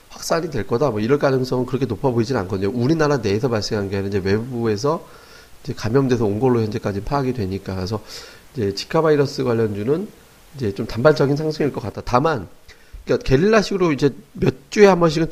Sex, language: male, Korean